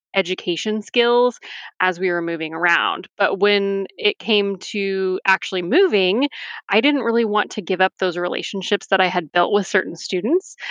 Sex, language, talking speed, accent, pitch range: female, English, 170 wpm, American, 185-215 Hz